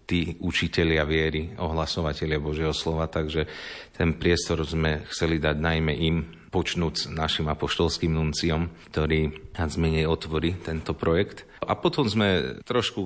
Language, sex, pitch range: Slovak, male, 80-90 Hz